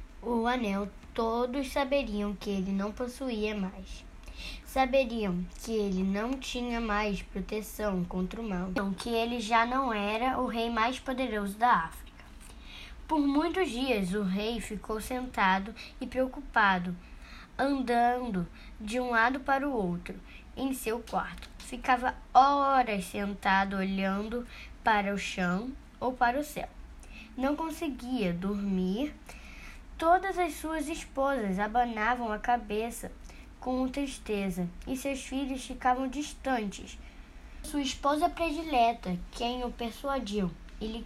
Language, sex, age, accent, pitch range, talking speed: Portuguese, female, 10-29, Brazilian, 205-265 Hz, 120 wpm